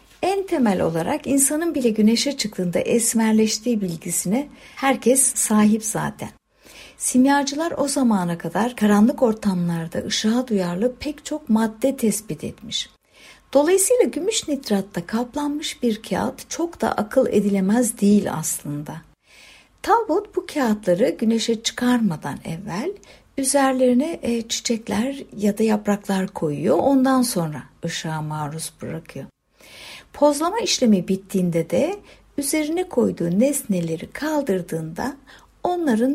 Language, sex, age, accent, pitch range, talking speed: Turkish, female, 60-79, native, 185-275 Hz, 105 wpm